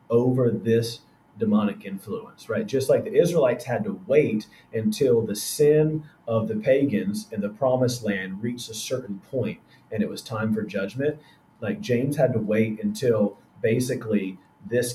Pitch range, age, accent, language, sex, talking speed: 105-130 Hz, 30-49, American, English, male, 160 wpm